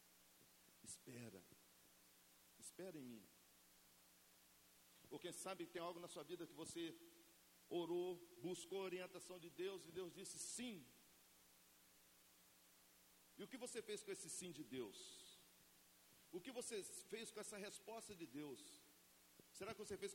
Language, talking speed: Portuguese, 140 wpm